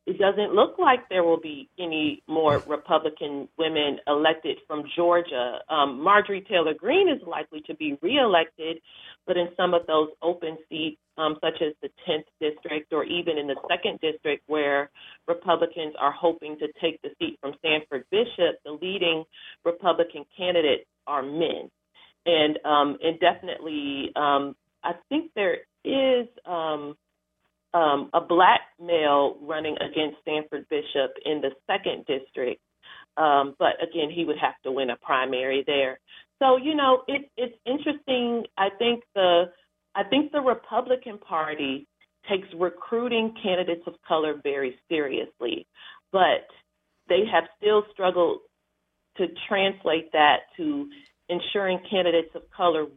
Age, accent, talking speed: 40-59, American, 145 wpm